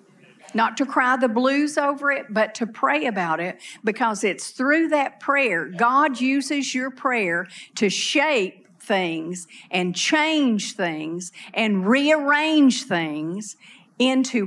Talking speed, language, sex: 130 wpm, English, female